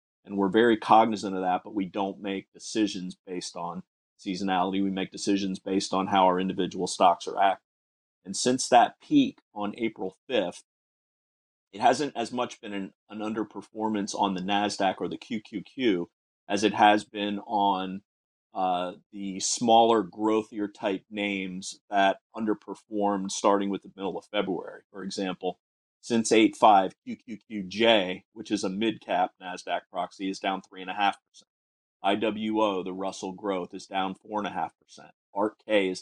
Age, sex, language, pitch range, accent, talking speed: 30-49, male, English, 95-105 Hz, American, 145 wpm